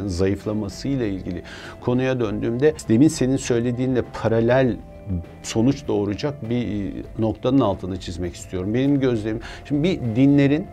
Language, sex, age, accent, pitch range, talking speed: Turkish, male, 50-69, native, 95-120 Hz, 120 wpm